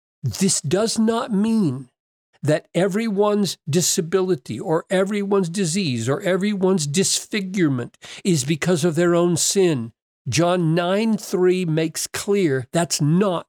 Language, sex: English, male